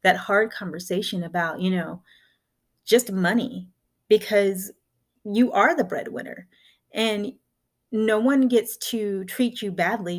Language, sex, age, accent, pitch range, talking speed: English, female, 30-49, American, 175-215 Hz, 125 wpm